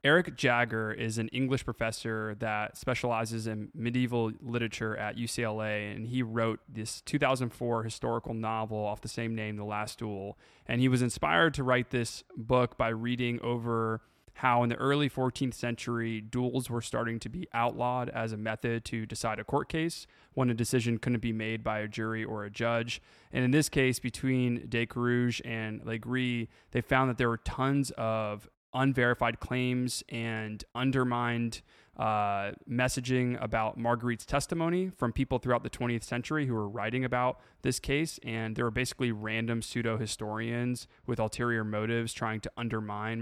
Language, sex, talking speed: English, male, 165 wpm